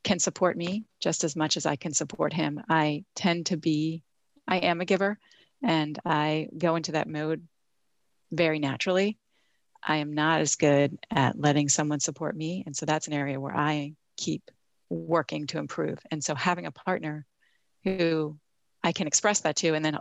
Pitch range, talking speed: 150-175 Hz, 185 wpm